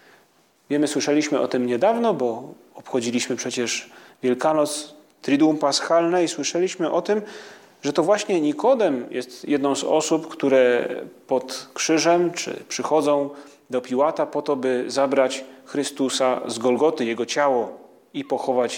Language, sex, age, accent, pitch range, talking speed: Polish, male, 30-49, native, 130-155 Hz, 130 wpm